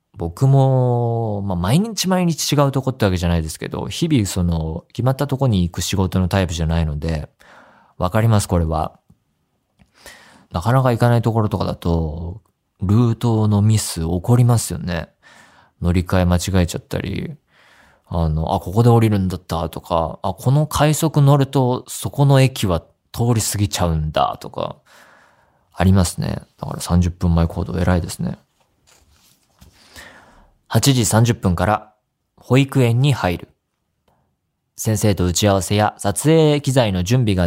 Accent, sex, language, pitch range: native, male, Japanese, 90-125 Hz